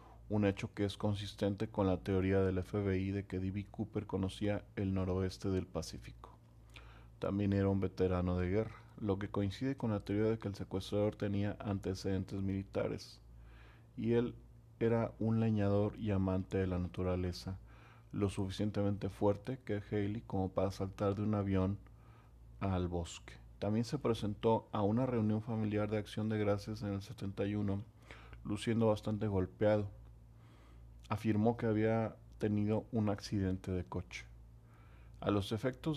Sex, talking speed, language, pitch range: male, 150 wpm, Spanish, 95-110 Hz